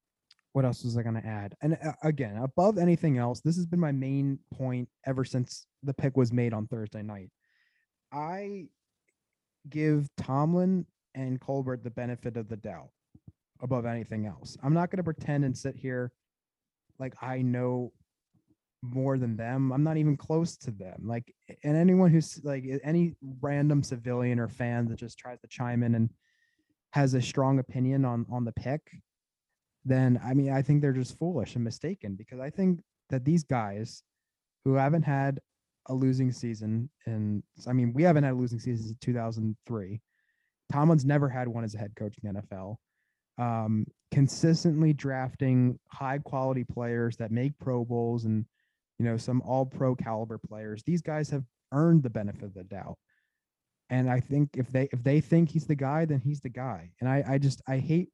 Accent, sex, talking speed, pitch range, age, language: American, male, 180 wpm, 120-145 Hz, 20-39, English